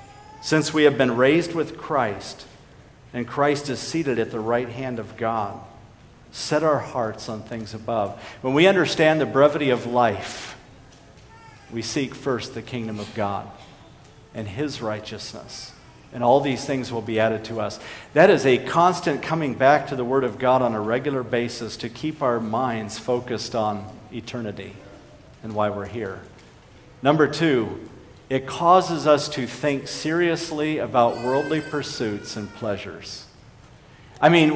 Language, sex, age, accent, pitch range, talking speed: English, male, 50-69, American, 110-150 Hz, 155 wpm